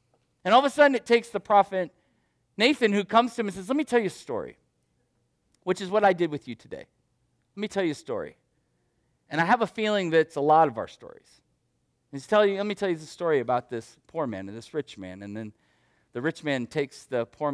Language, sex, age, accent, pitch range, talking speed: English, male, 40-59, American, 120-180 Hz, 245 wpm